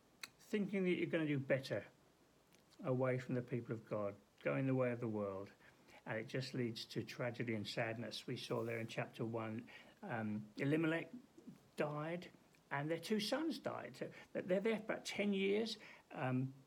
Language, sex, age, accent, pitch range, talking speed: English, male, 60-79, British, 120-175 Hz, 175 wpm